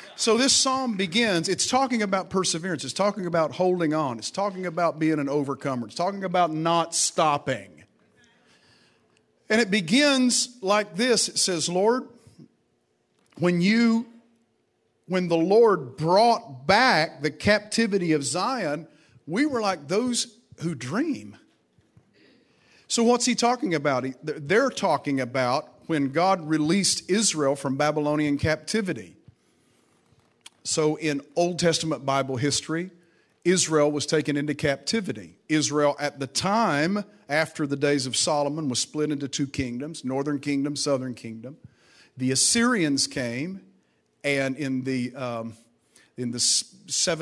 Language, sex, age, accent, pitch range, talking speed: English, male, 50-69, American, 135-185 Hz, 130 wpm